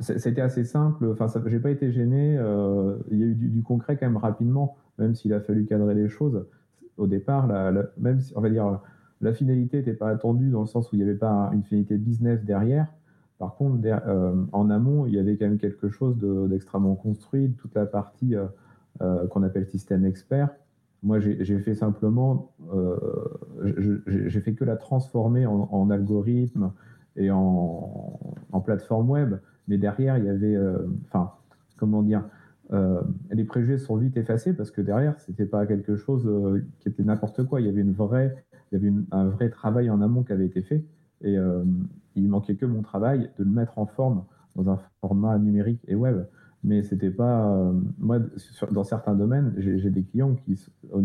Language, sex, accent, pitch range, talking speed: French, male, French, 100-125 Hz, 210 wpm